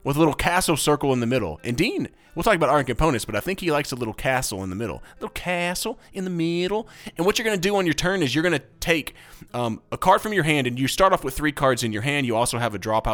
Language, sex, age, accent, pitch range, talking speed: English, male, 30-49, American, 110-150 Hz, 305 wpm